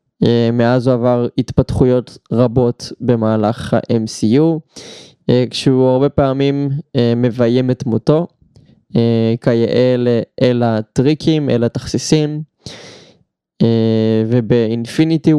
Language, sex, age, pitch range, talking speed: Hebrew, male, 20-39, 115-135 Hz, 75 wpm